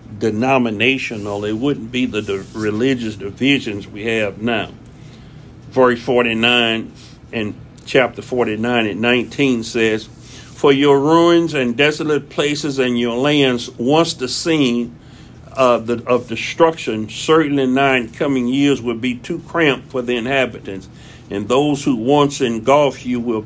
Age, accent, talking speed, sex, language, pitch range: 60-79, American, 135 wpm, male, English, 115-140 Hz